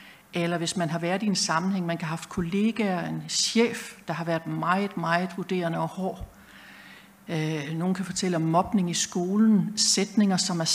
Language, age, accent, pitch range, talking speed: Danish, 60-79, native, 170-215 Hz, 185 wpm